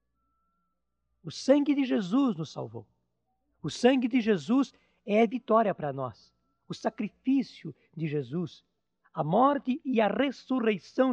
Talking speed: 130 wpm